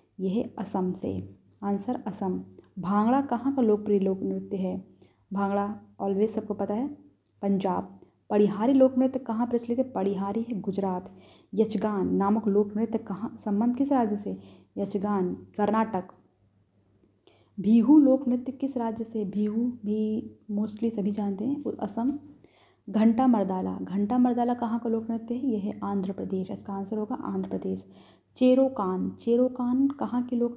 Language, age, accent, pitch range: Hindi, 30-49, native, 195-240 Hz